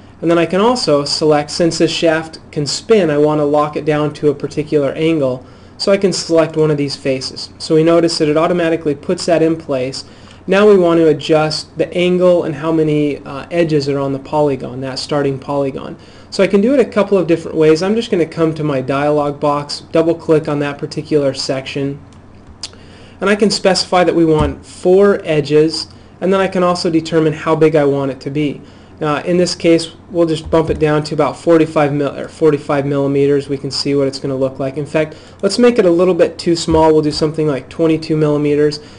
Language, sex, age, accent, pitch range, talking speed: English, male, 30-49, American, 140-165 Hz, 225 wpm